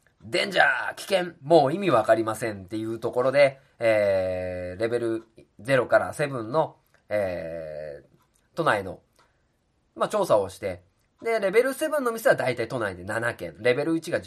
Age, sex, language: 20-39, male, Japanese